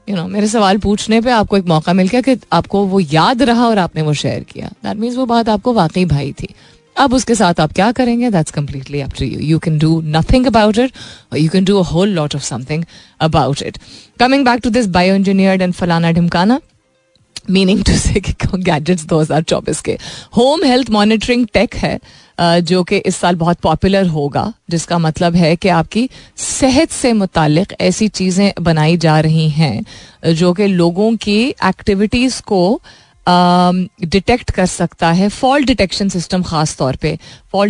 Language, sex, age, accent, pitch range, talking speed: Hindi, female, 30-49, native, 170-210 Hz, 160 wpm